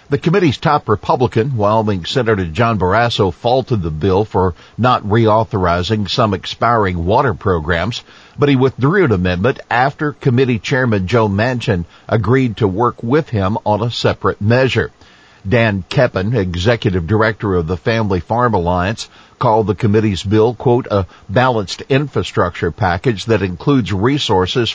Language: English